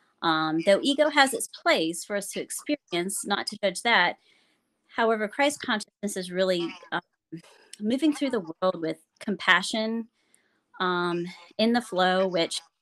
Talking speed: 145 wpm